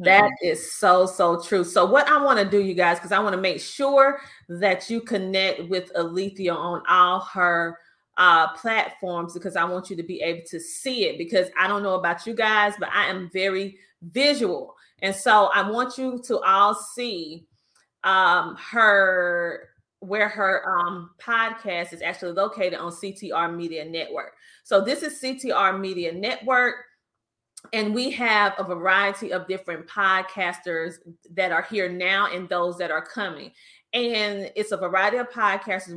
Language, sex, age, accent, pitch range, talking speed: English, female, 30-49, American, 175-220 Hz, 170 wpm